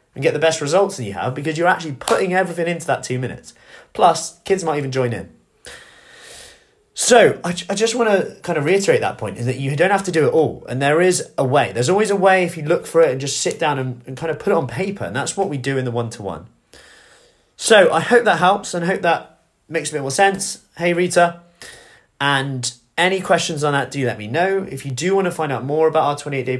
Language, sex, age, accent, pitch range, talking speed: English, male, 20-39, British, 130-175 Hz, 255 wpm